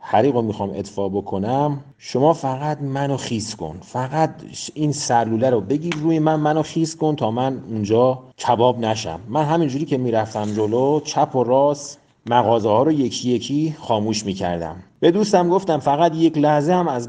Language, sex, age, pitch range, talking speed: Persian, male, 40-59, 110-160 Hz, 170 wpm